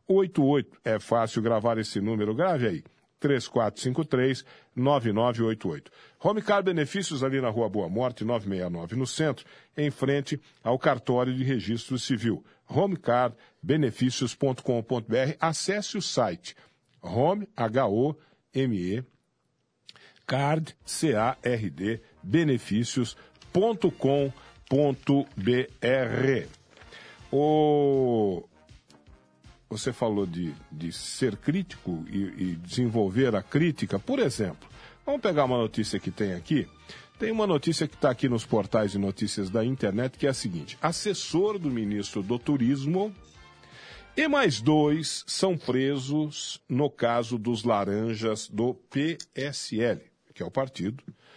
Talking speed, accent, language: 105 wpm, Brazilian, Portuguese